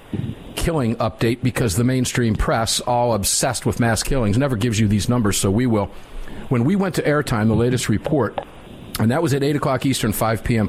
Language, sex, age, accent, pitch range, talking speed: English, male, 50-69, American, 105-130 Hz, 195 wpm